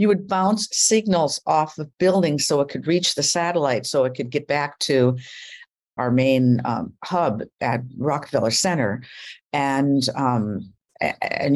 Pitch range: 120-160 Hz